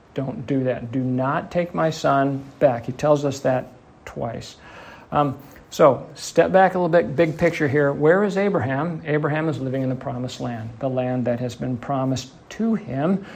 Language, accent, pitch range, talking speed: English, American, 125-155 Hz, 190 wpm